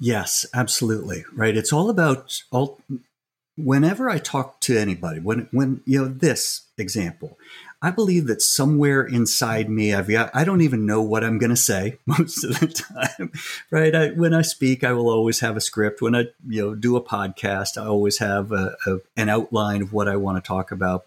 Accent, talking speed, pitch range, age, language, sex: American, 200 wpm, 105-135 Hz, 50-69, English, male